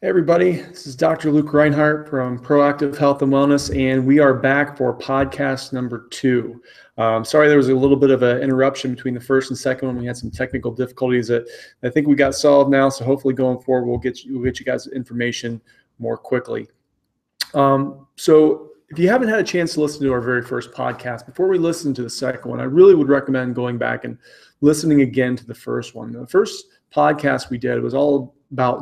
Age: 30-49